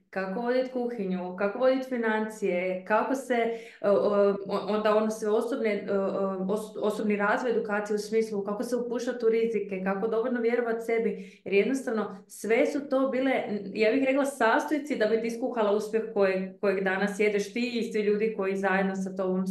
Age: 20-39